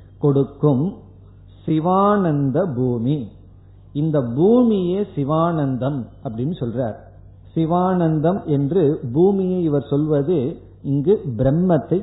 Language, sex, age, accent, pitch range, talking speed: Tamil, male, 50-69, native, 120-170 Hz, 75 wpm